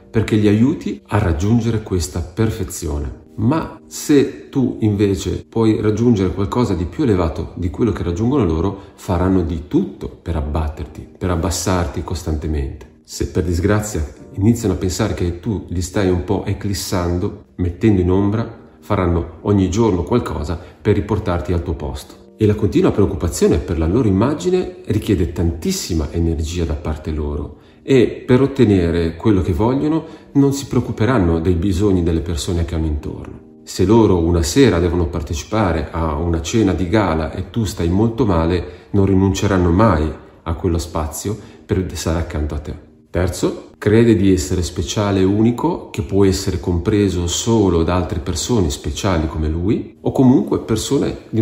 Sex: male